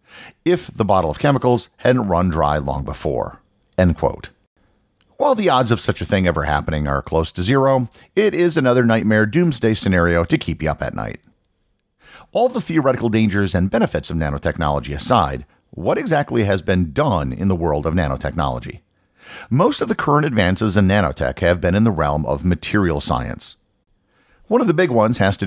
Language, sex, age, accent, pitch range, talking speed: English, male, 50-69, American, 80-115 Hz, 185 wpm